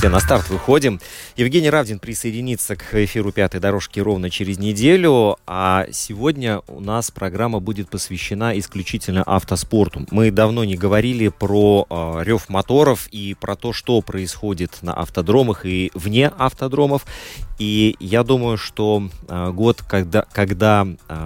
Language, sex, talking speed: Russian, male, 135 wpm